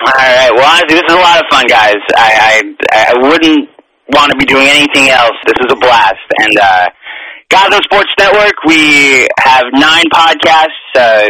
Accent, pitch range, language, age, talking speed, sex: American, 125-160 Hz, English, 30-49, 170 wpm, male